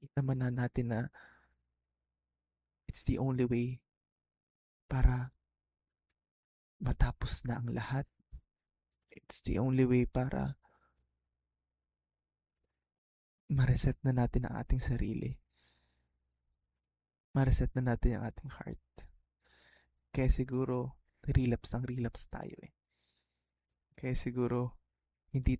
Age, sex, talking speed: 20-39, male, 95 wpm